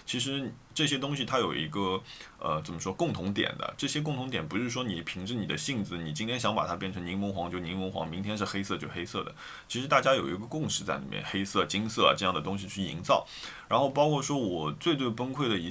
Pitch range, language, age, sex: 95-130 Hz, Chinese, 20-39, male